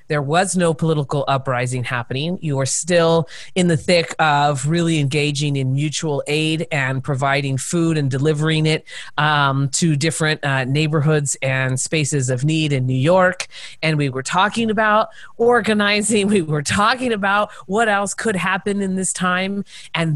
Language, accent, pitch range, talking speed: English, American, 150-190 Hz, 160 wpm